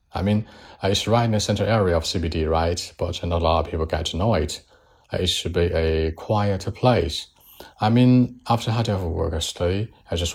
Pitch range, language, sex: 80-95 Hz, Chinese, male